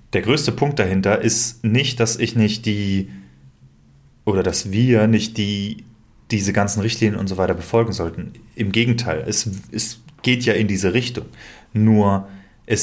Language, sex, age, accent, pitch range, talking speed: German, male, 30-49, German, 100-120 Hz, 155 wpm